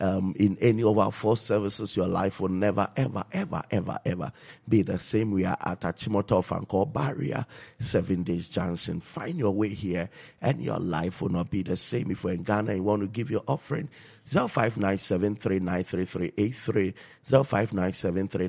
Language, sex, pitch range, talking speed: English, male, 90-115 Hz, 165 wpm